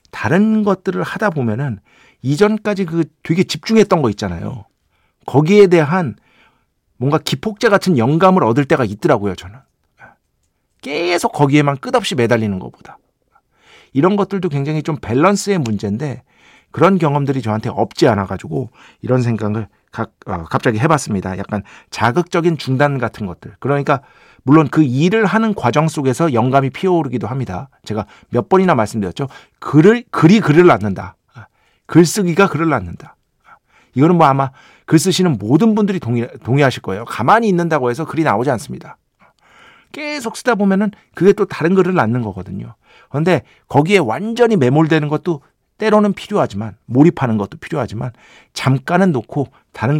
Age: 50-69